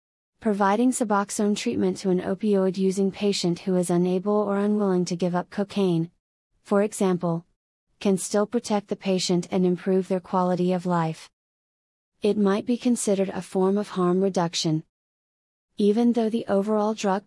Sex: female